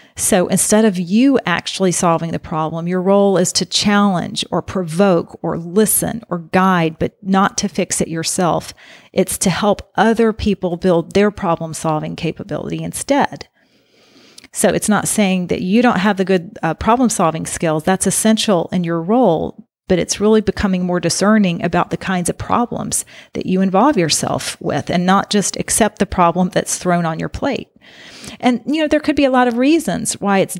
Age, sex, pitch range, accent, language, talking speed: 40-59, female, 175-215 Hz, American, English, 185 wpm